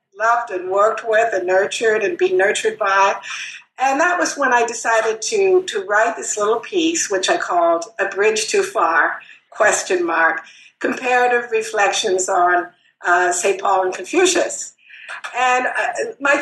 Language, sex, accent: English, female, American